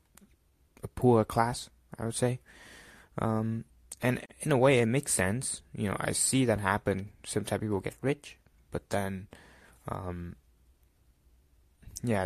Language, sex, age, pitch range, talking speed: English, male, 20-39, 90-115 Hz, 135 wpm